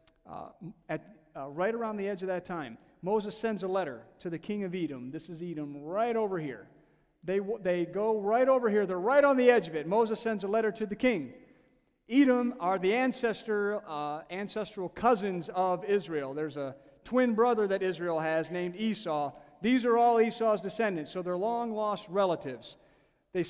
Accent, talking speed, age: American, 190 wpm, 40-59